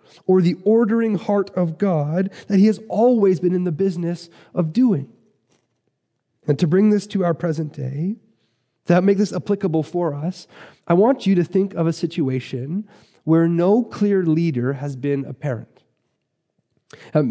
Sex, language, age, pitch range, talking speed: male, English, 30-49, 135-175 Hz, 165 wpm